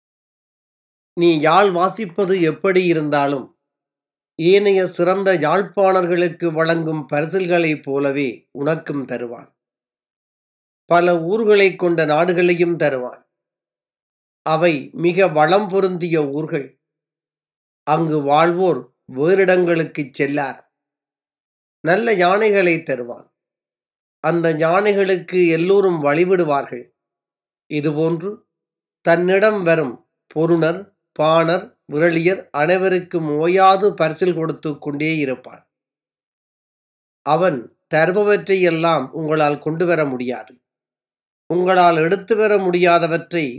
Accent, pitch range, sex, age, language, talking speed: native, 150-180 Hz, male, 30-49, Tamil, 80 wpm